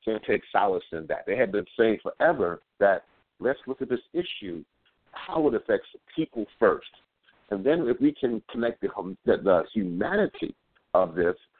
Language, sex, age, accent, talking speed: English, male, 60-79, American, 170 wpm